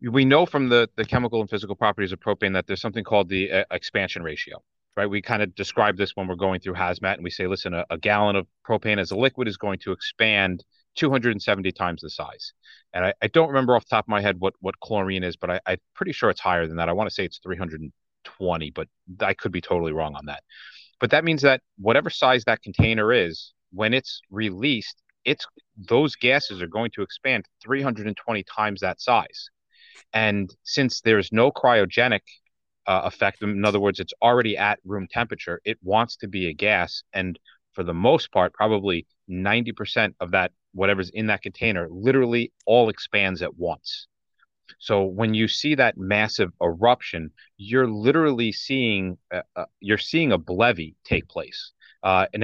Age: 30-49